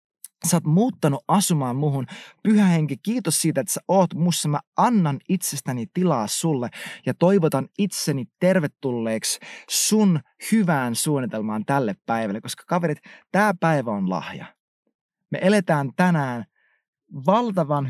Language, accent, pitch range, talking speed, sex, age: Finnish, native, 135-185 Hz, 125 wpm, male, 20-39